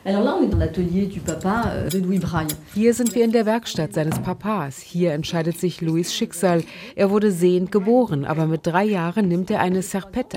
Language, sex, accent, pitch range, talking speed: German, female, German, 165-205 Hz, 145 wpm